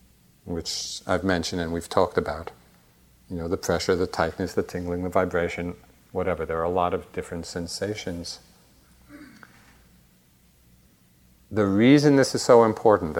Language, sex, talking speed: English, male, 140 wpm